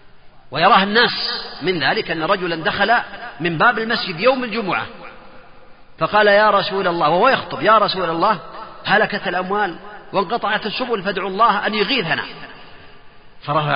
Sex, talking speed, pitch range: male, 130 wpm, 160-215 Hz